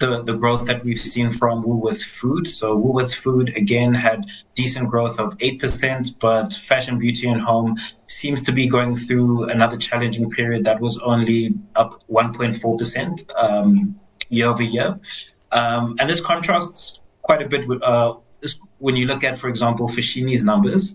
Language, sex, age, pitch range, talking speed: English, male, 20-39, 115-135 Hz, 160 wpm